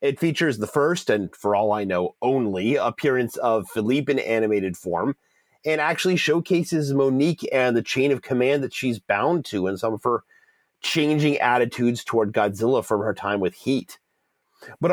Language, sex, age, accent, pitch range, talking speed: English, male, 30-49, American, 115-165 Hz, 175 wpm